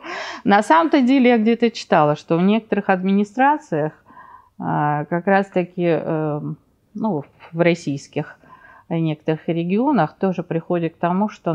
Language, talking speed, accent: Russian, 120 wpm, native